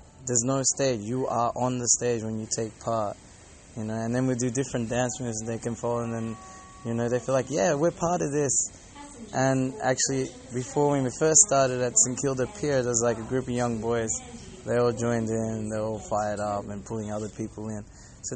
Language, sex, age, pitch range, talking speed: English, male, 20-39, 105-125 Hz, 225 wpm